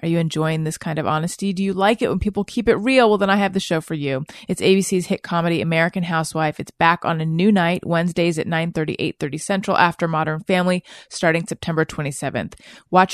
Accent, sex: American, female